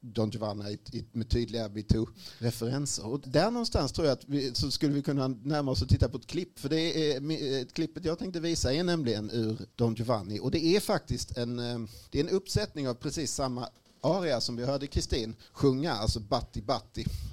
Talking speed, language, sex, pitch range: 195 wpm, Swedish, male, 110-140 Hz